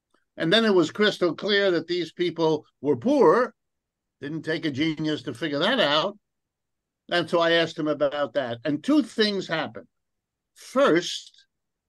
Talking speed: 155 wpm